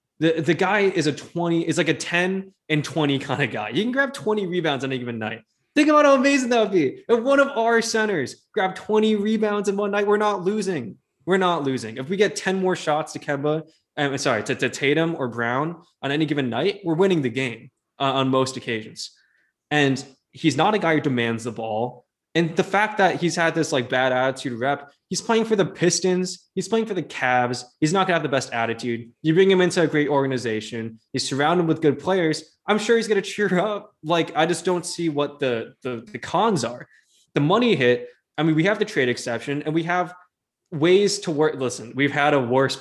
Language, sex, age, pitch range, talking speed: English, male, 20-39, 130-185 Hz, 230 wpm